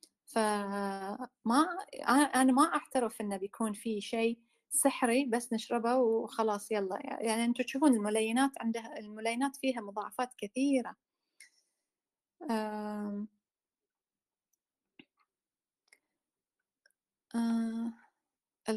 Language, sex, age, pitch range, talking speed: English, female, 30-49, 205-250 Hz, 80 wpm